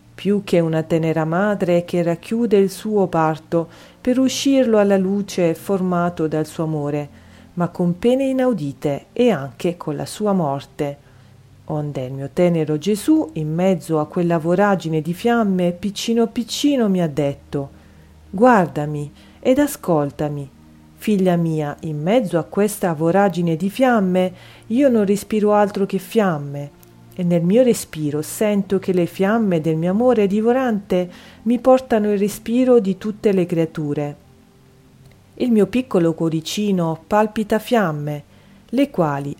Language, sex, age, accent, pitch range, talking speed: Italian, female, 40-59, native, 155-215 Hz, 140 wpm